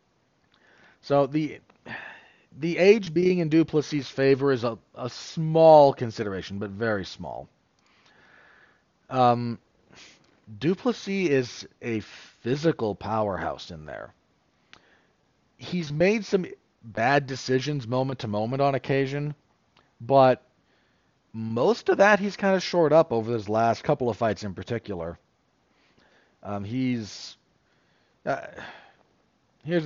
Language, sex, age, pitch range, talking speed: English, male, 40-59, 105-145 Hz, 110 wpm